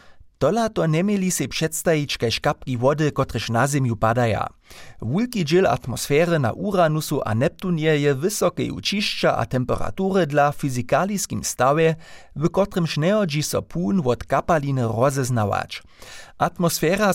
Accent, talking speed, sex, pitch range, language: German, 120 wpm, male, 125-175 Hz, German